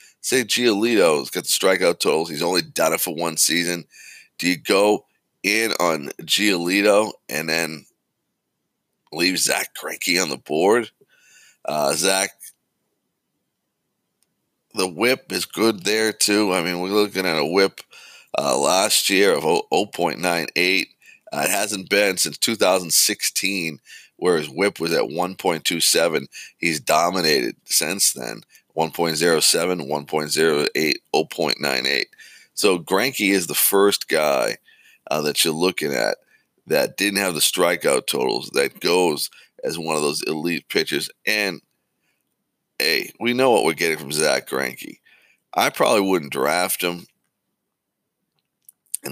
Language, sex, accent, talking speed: English, male, American, 130 wpm